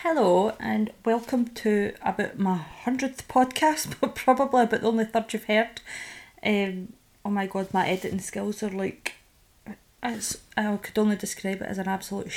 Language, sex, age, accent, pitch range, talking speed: English, female, 20-39, British, 190-225 Hz, 160 wpm